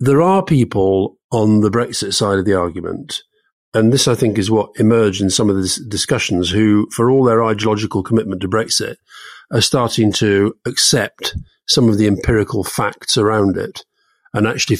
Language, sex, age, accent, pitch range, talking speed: English, male, 40-59, British, 100-120 Hz, 180 wpm